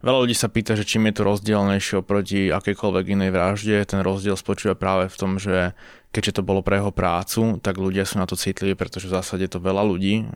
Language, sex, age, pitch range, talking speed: Slovak, male, 20-39, 95-110 Hz, 225 wpm